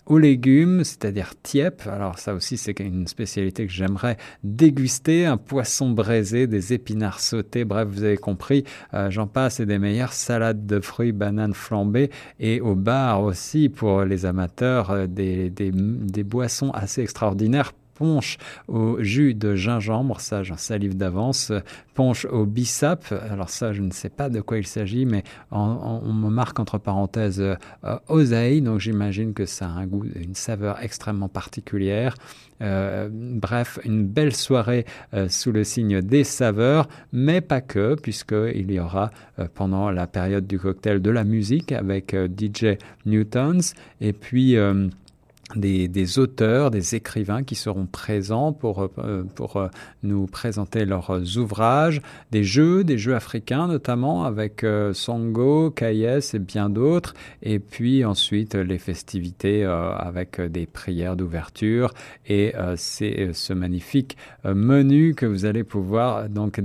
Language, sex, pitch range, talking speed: French, male, 100-125 Hz, 155 wpm